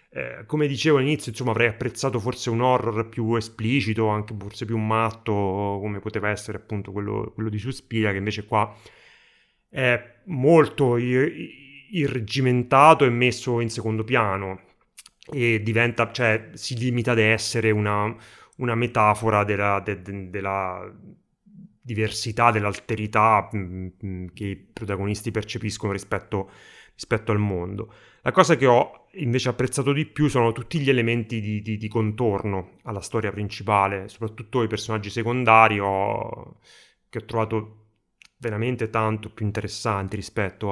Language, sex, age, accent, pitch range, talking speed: Italian, male, 30-49, native, 105-120 Hz, 135 wpm